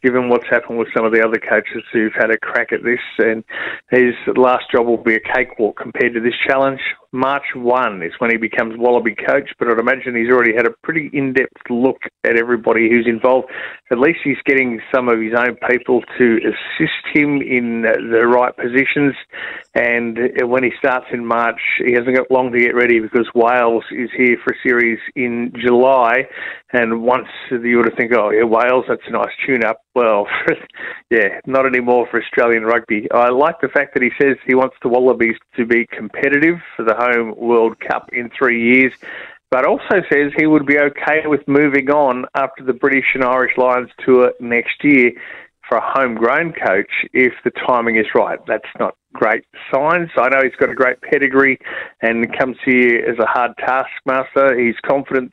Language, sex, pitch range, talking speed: English, male, 115-130 Hz, 190 wpm